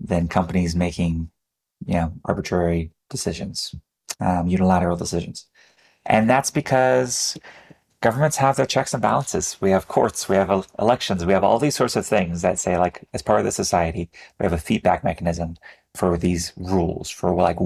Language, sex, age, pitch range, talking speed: English, male, 30-49, 90-110 Hz, 175 wpm